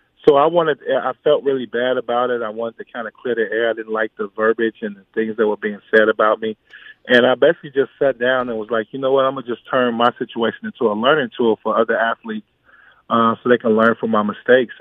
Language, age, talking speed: English, 20-39, 265 wpm